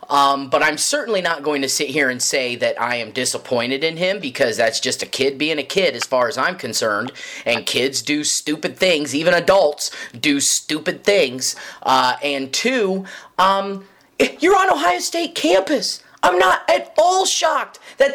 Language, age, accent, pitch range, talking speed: English, 30-49, American, 195-310 Hz, 180 wpm